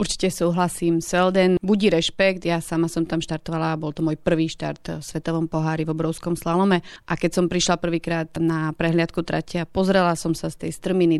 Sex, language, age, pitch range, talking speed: female, Slovak, 30-49, 165-185 Hz, 195 wpm